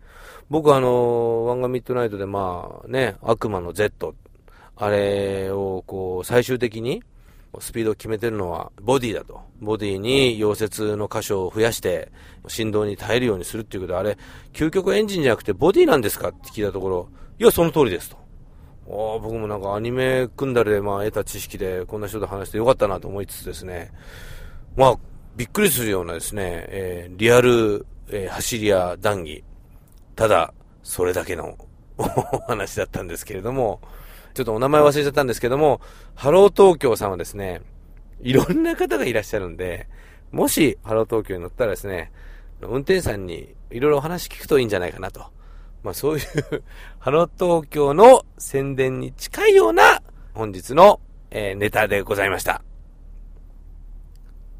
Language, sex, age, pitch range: Japanese, male, 40-59, 90-130 Hz